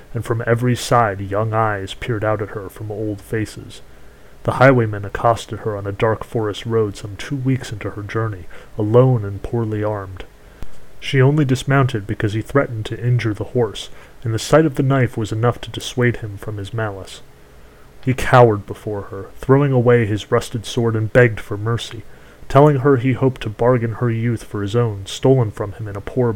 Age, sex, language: 30-49, male, English